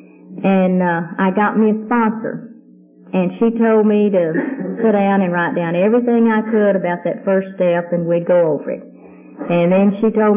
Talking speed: 190 wpm